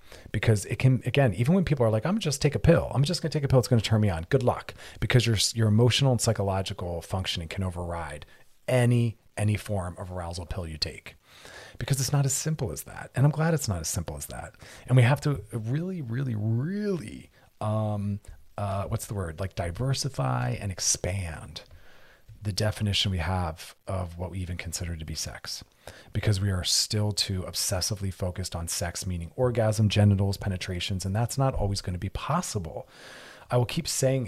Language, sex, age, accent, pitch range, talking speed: English, male, 30-49, American, 95-125 Hz, 200 wpm